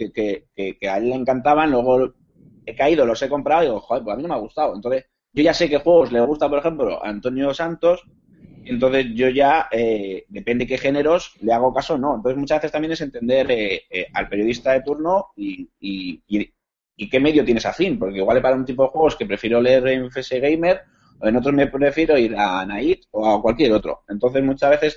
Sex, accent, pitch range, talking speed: male, Spanish, 115-145 Hz, 230 wpm